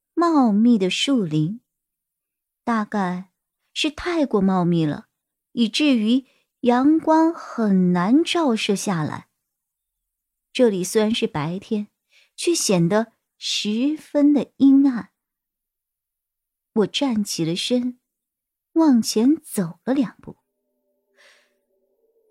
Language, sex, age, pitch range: Chinese, male, 50-69, 210-315 Hz